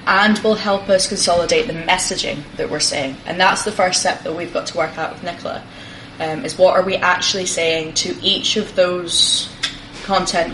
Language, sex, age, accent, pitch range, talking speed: English, female, 10-29, British, 160-190 Hz, 200 wpm